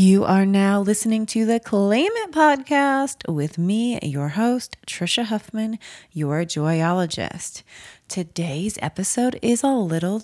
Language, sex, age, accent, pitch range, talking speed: English, female, 30-49, American, 155-220 Hz, 130 wpm